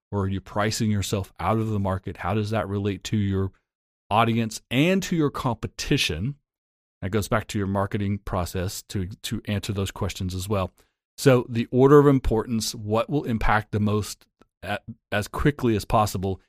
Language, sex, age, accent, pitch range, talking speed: English, male, 40-59, American, 100-115 Hz, 175 wpm